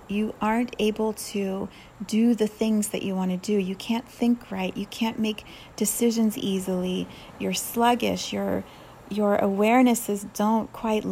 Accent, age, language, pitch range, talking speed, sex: American, 30-49, English, 200-235 Hz, 150 wpm, female